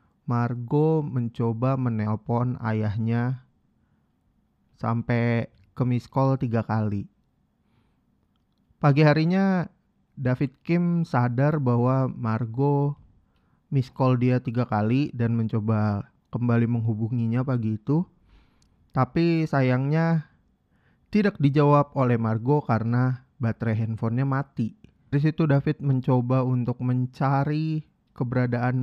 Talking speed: 90 wpm